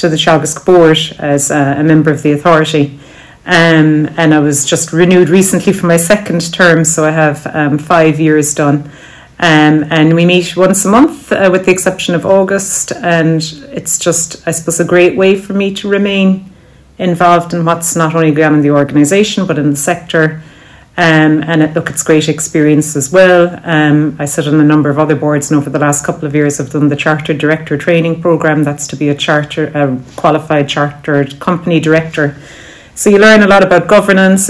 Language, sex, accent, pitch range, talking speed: English, female, Irish, 145-170 Hz, 200 wpm